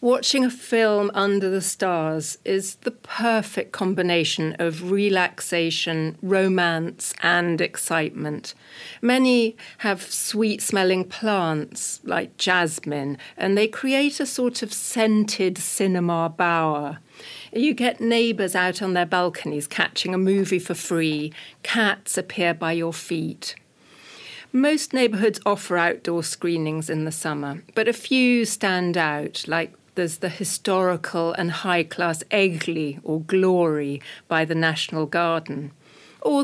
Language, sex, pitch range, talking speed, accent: Greek, female, 165-225 Hz, 125 wpm, British